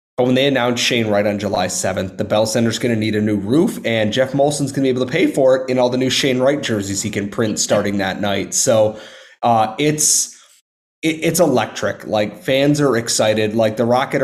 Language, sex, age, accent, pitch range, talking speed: English, male, 30-49, American, 110-130 Hz, 230 wpm